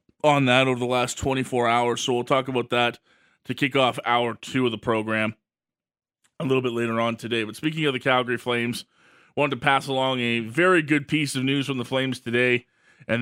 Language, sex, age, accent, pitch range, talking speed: English, male, 20-39, American, 115-135 Hz, 215 wpm